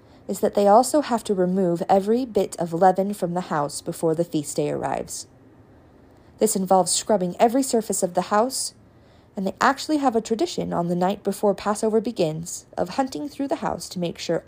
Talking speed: 195 wpm